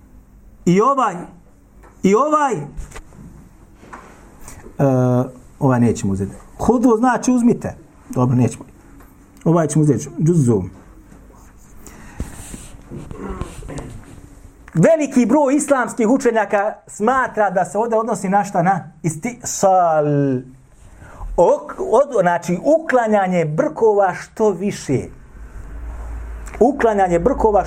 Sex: male